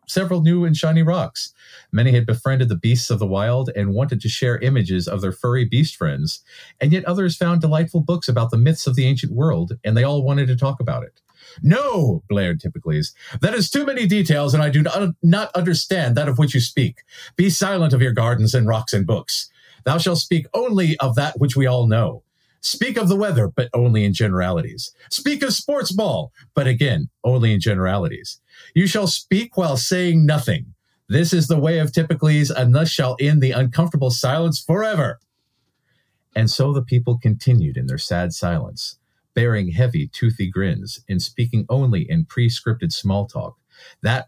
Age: 50-69